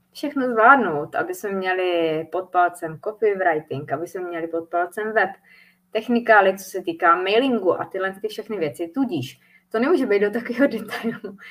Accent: native